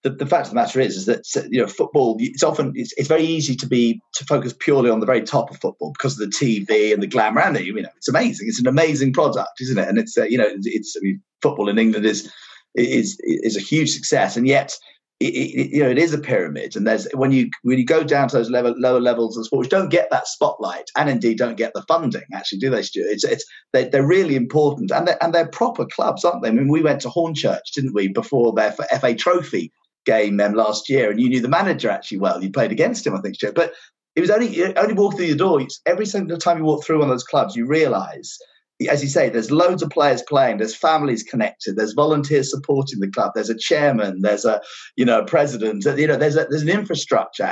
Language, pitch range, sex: English, 120-170 Hz, male